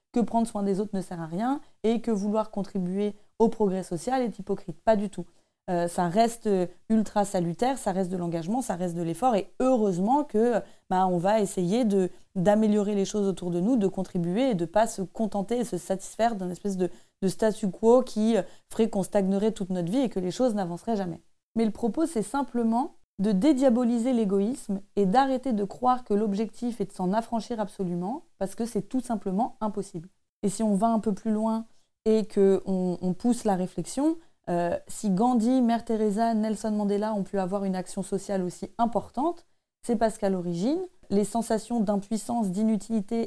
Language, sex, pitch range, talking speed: French, female, 190-230 Hz, 195 wpm